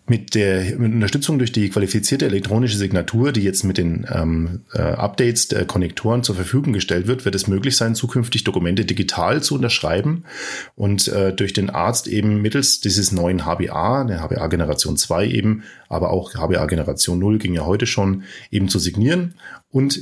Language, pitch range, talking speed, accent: German, 95-120 Hz, 170 wpm, German